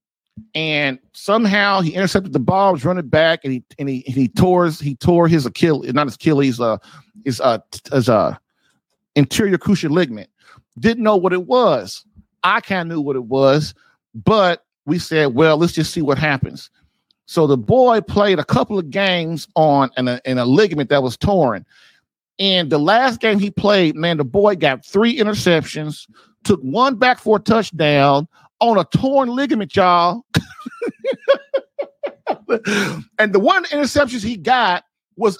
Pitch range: 150-215 Hz